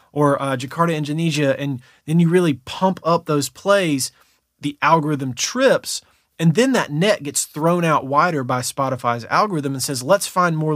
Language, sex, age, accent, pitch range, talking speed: English, male, 30-49, American, 130-165 Hz, 175 wpm